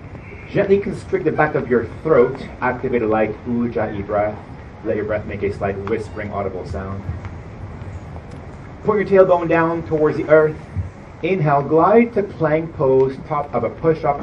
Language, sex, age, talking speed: Hebrew, male, 30-49, 155 wpm